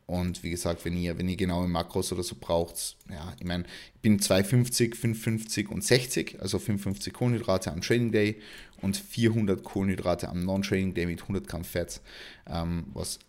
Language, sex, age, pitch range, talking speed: German, male, 30-49, 95-120 Hz, 175 wpm